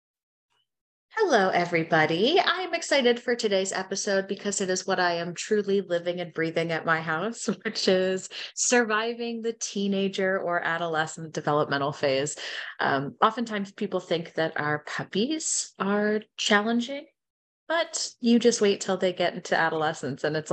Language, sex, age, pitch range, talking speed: English, female, 30-49, 155-210 Hz, 145 wpm